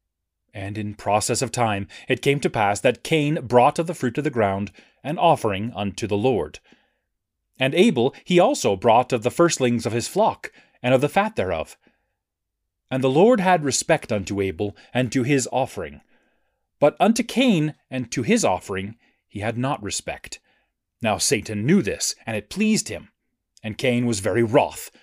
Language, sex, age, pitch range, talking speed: English, male, 30-49, 100-135 Hz, 175 wpm